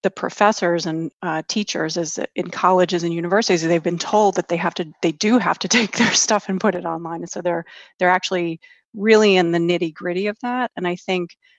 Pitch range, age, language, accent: 170-185 Hz, 30-49, English, American